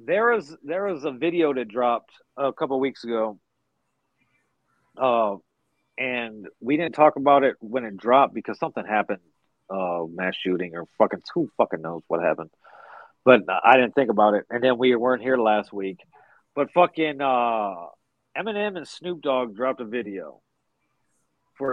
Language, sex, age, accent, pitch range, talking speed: English, male, 40-59, American, 120-160 Hz, 165 wpm